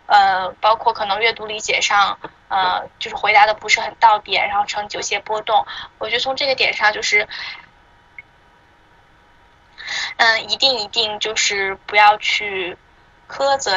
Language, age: Chinese, 10-29